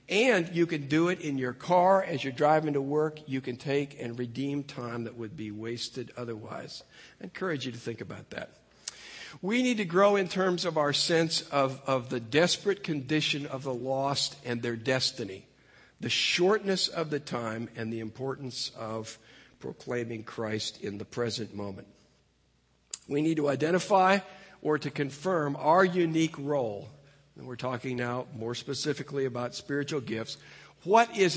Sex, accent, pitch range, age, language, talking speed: male, American, 120-155 Hz, 50-69, English, 165 wpm